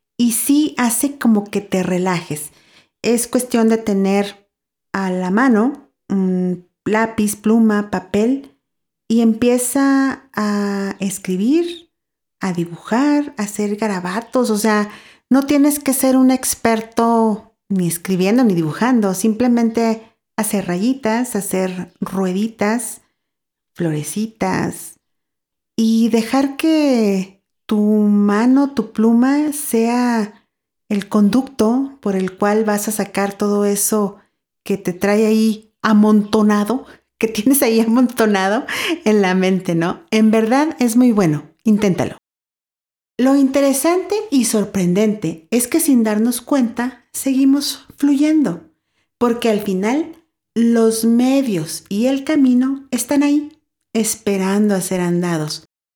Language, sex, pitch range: Spanish, female, 200-255 Hz